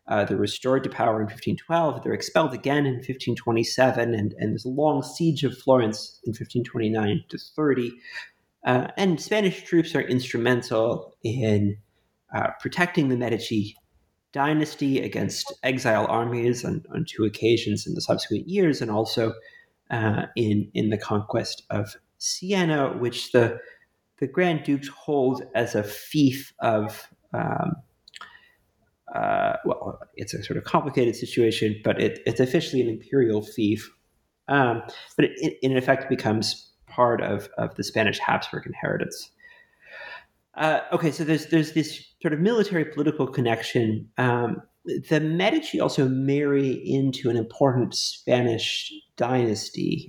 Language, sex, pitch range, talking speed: English, male, 115-155 Hz, 140 wpm